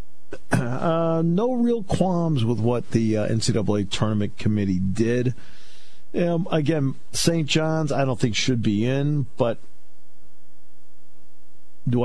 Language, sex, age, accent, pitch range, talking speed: English, male, 50-69, American, 90-145 Hz, 120 wpm